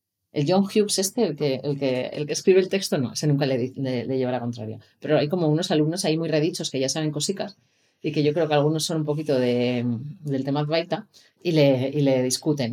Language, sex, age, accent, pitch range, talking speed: Spanish, female, 30-49, Spanish, 140-165 Hz, 245 wpm